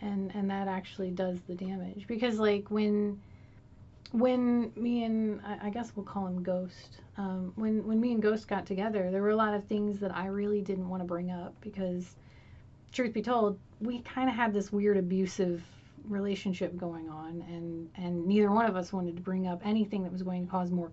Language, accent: English, American